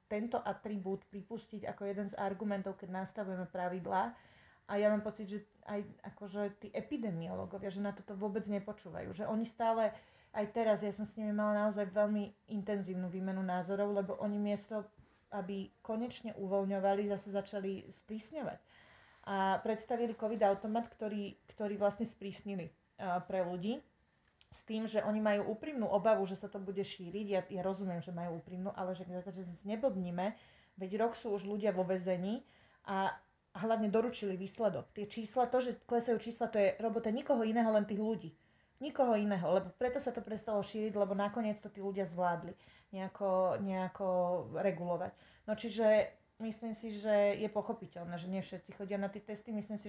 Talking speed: 165 wpm